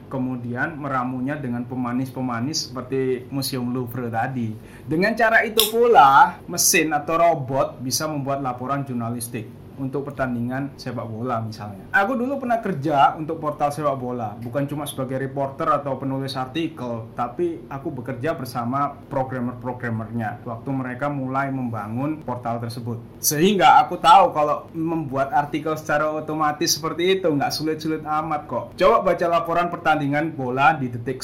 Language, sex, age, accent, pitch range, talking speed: Indonesian, male, 20-39, native, 125-160 Hz, 135 wpm